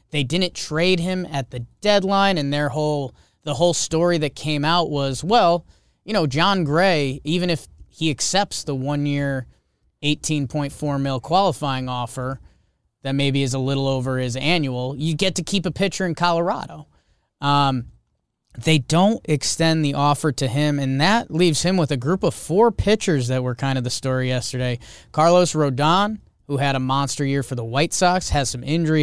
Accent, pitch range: American, 125-160 Hz